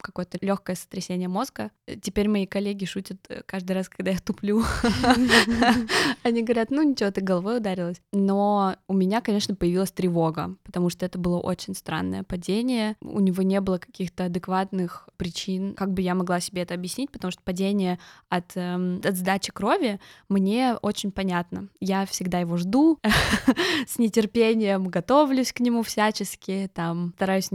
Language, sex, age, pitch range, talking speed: Russian, female, 20-39, 180-220 Hz, 145 wpm